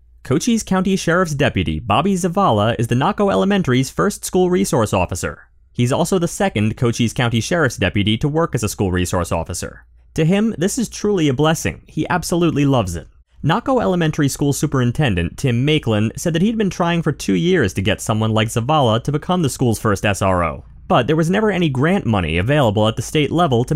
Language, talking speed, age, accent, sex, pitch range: English, 195 wpm, 30-49, American, male, 105-165 Hz